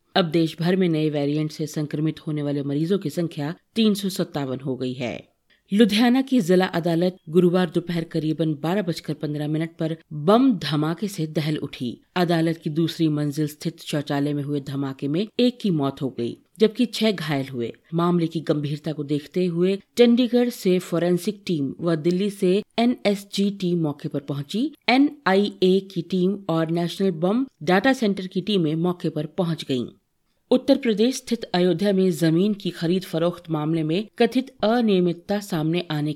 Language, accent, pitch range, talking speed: Hindi, native, 155-200 Hz, 165 wpm